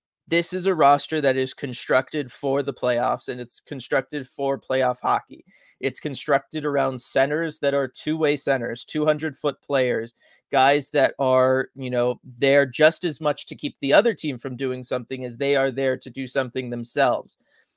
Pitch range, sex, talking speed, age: 130-150 Hz, male, 180 wpm, 20-39